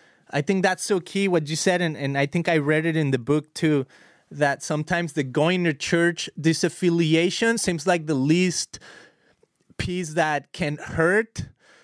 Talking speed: 170 wpm